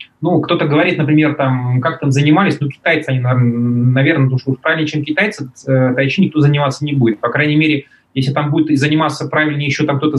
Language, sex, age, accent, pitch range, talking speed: Russian, male, 20-39, native, 130-155 Hz, 195 wpm